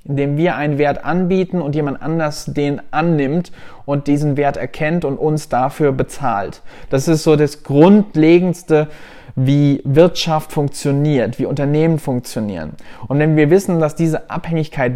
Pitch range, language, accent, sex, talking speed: 140-165 Hz, German, German, male, 145 wpm